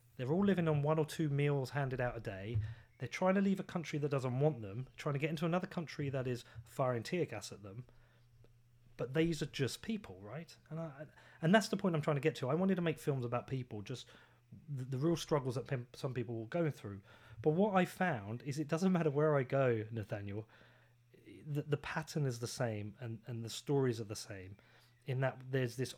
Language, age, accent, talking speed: English, 30-49, British, 230 wpm